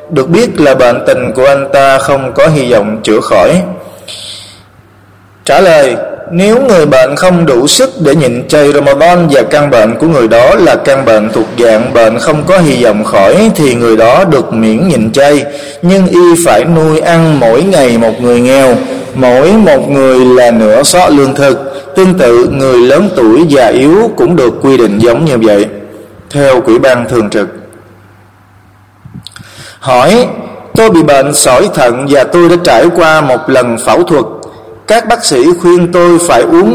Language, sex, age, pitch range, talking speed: Vietnamese, male, 20-39, 120-175 Hz, 180 wpm